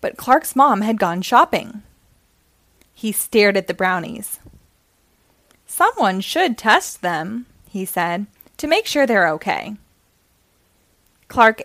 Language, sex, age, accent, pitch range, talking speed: English, female, 20-39, American, 175-250 Hz, 120 wpm